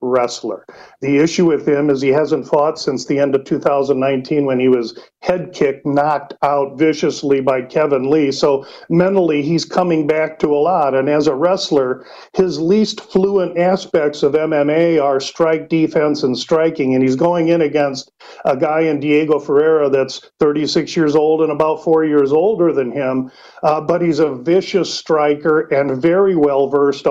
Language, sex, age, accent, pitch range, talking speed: English, male, 50-69, American, 145-175 Hz, 175 wpm